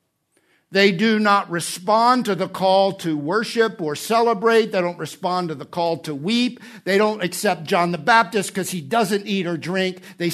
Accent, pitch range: American, 155-195 Hz